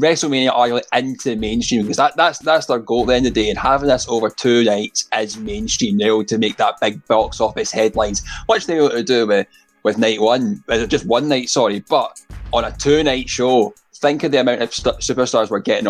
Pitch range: 110-135 Hz